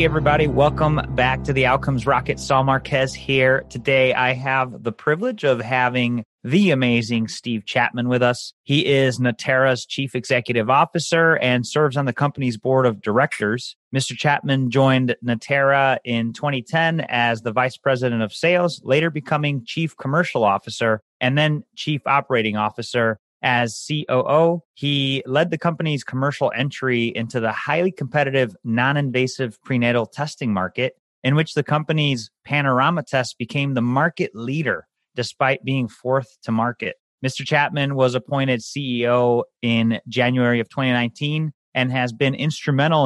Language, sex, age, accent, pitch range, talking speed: English, male, 30-49, American, 120-145 Hz, 145 wpm